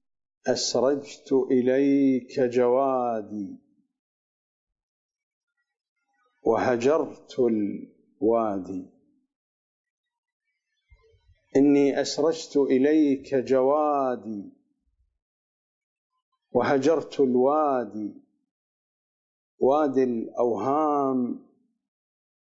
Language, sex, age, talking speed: English, male, 50-69, 35 wpm